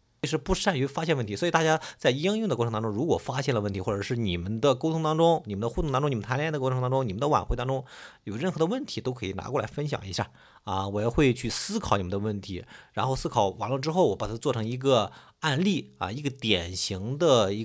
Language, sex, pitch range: Chinese, male, 100-140 Hz